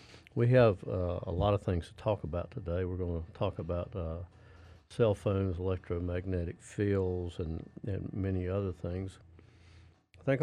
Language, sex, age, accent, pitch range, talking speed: English, male, 50-69, American, 90-110 Hz, 160 wpm